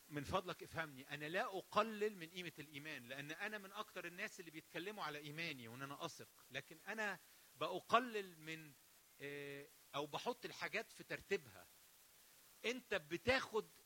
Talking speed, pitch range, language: 140 wpm, 160-230 Hz, English